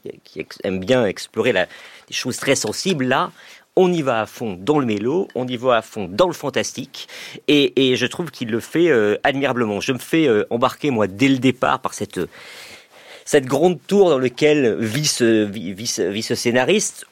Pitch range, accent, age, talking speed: 120-155 Hz, French, 40-59, 205 wpm